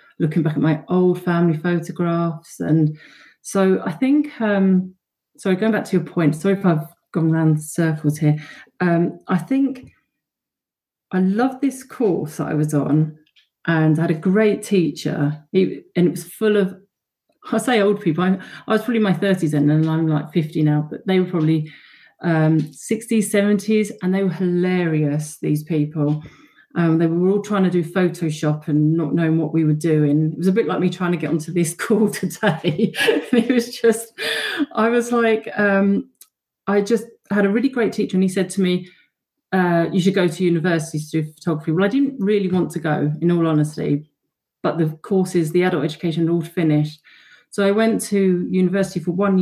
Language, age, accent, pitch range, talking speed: English, 40-59, British, 155-200 Hz, 190 wpm